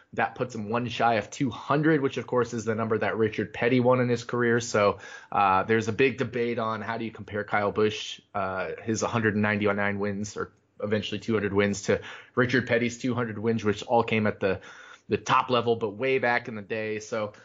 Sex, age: male, 20-39